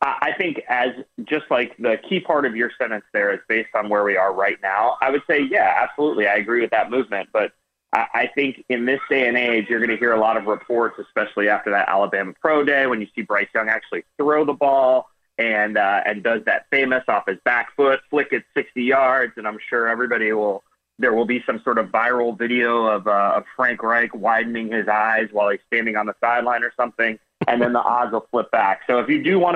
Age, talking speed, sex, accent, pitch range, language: 30-49, 235 wpm, male, American, 110-130 Hz, English